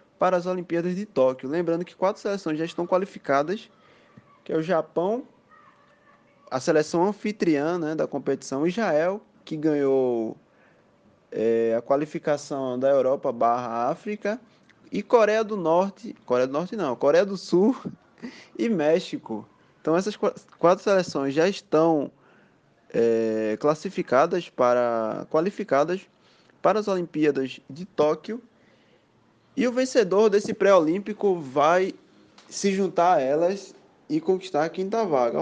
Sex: male